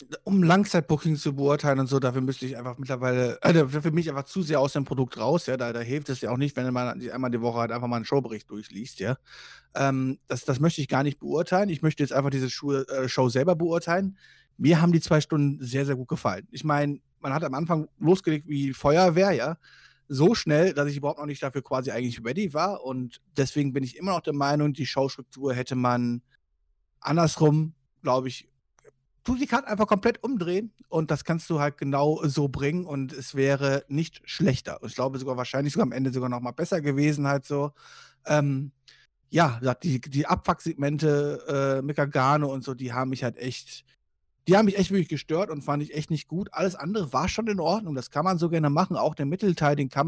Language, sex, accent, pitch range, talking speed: German, male, German, 130-160 Hz, 215 wpm